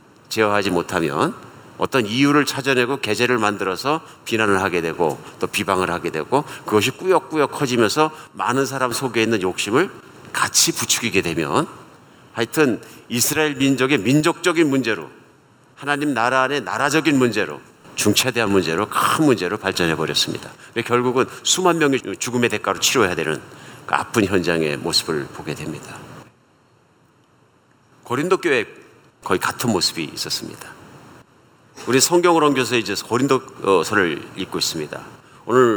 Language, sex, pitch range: Korean, male, 105-145 Hz